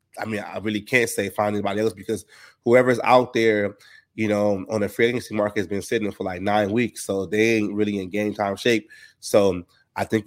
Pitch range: 105-115 Hz